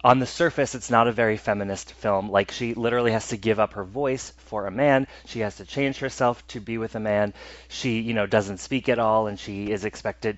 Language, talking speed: English, 245 wpm